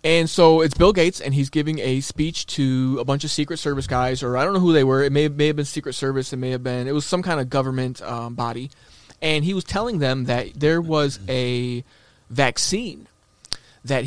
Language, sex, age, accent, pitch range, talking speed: English, male, 30-49, American, 125-155 Hz, 230 wpm